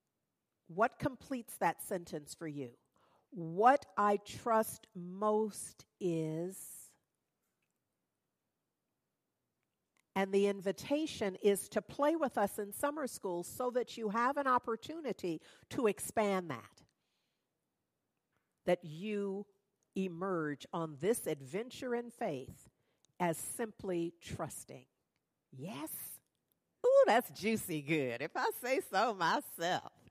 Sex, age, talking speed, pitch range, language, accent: female, 50-69, 105 wpm, 165-230 Hz, English, American